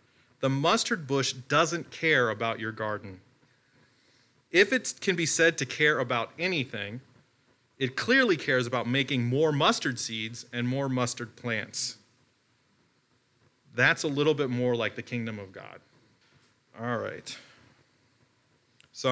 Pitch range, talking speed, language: 120-140 Hz, 130 wpm, English